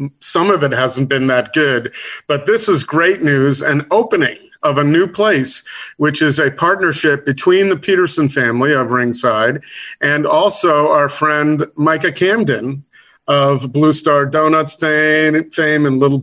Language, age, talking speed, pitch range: English, 40-59, 155 wpm, 135-170 Hz